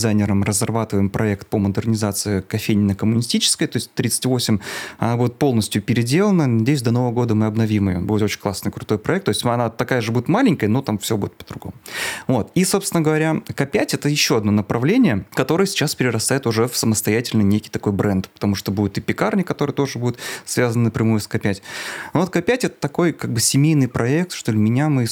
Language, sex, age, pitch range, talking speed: Russian, male, 30-49, 110-140 Hz, 190 wpm